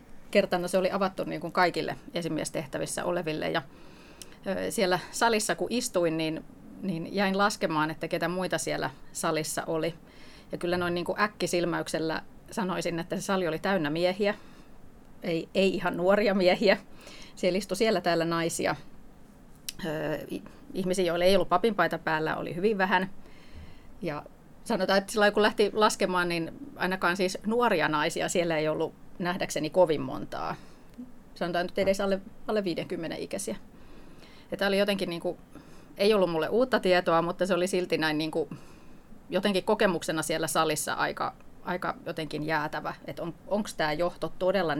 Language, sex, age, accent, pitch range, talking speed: Finnish, female, 30-49, native, 165-200 Hz, 155 wpm